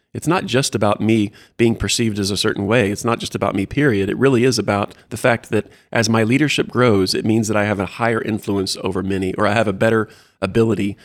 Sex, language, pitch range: male, English, 100-120 Hz